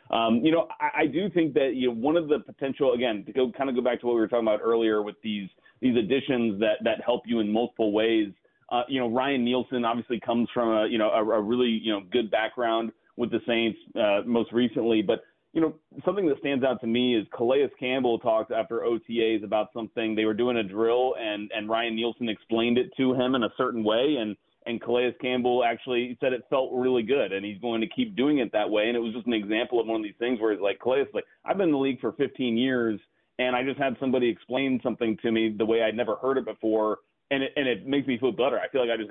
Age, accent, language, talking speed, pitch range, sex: 30-49, American, English, 260 wpm, 110-130 Hz, male